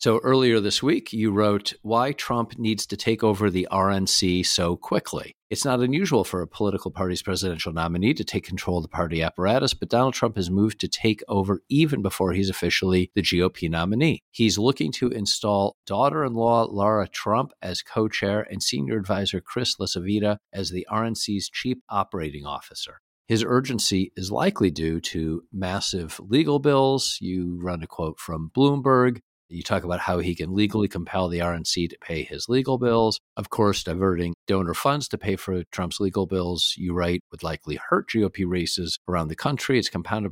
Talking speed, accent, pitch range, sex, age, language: 180 wpm, American, 90-110 Hz, male, 50-69, English